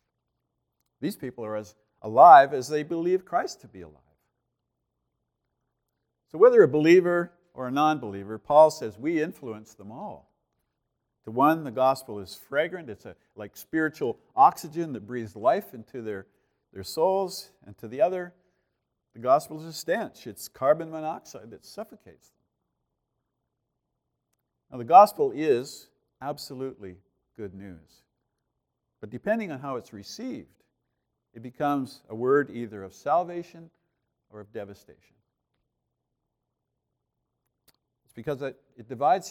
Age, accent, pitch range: 50-69, American, 115-165 Hz